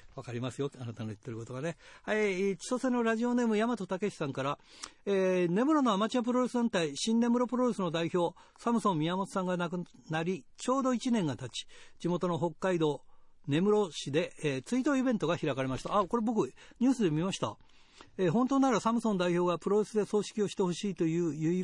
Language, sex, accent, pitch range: Japanese, male, native, 150-210 Hz